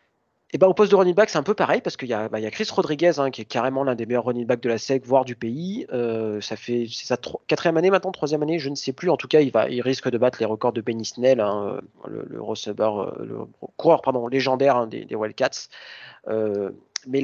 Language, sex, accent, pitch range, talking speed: French, male, French, 120-155 Hz, 270 wpm